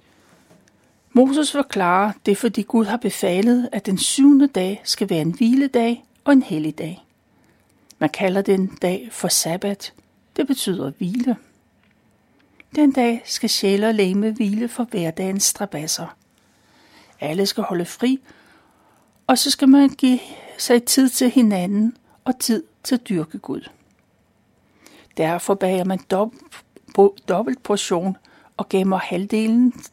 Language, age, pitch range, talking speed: Danish, 60-79, 185-250 Hz, 130 wpm